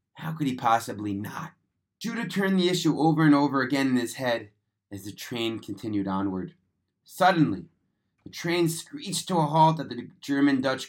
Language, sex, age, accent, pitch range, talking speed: English, male, 30-49, American, 115-160 Hz, 170 wpm